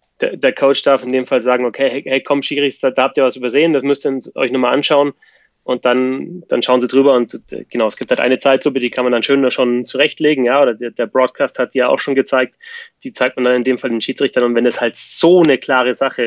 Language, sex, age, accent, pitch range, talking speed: German, male, 20-39, German, 120-145 Hz, 260 wpm